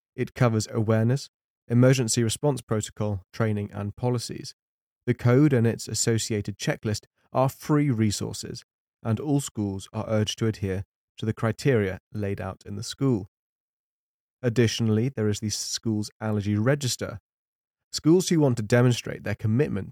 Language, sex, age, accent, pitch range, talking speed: English, male, 30-49, British, 105-125 Hz, 140 wpm